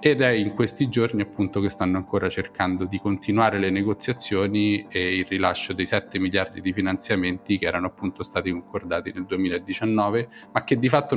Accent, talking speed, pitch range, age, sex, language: native, 175 wpm, 95-125 Hz, 30-49, male, Italian